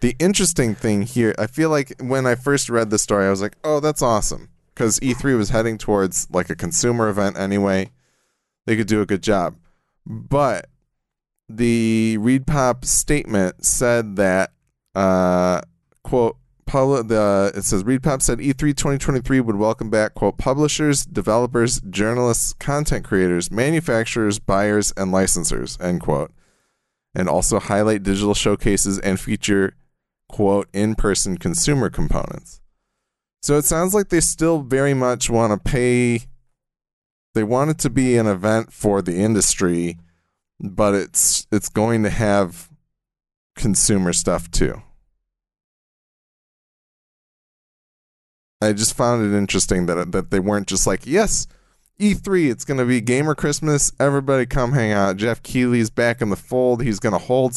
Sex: male